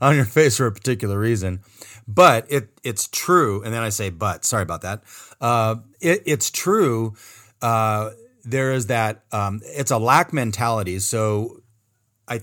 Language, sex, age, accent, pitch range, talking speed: English, male, 30-49, American, 110-140 Hz, 165 wpm